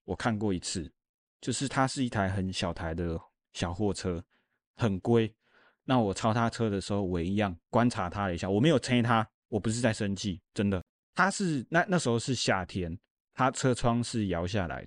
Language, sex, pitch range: Chinese, male, 95-130 Hz